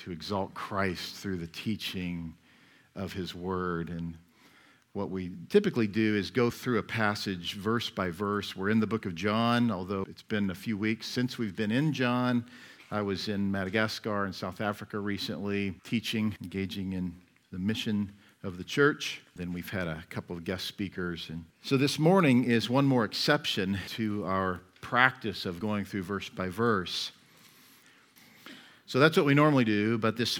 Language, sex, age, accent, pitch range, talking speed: English, male, 50-69, American, 95-130 Hz, 175 wpm